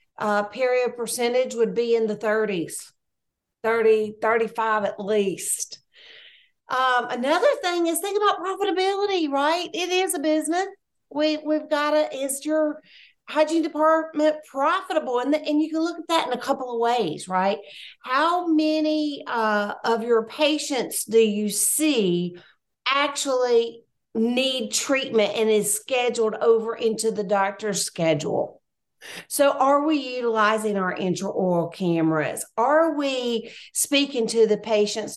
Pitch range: 210-300 Hz